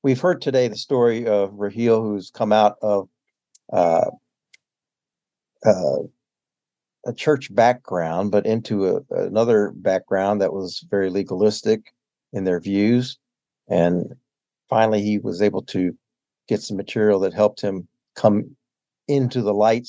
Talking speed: 130 wpm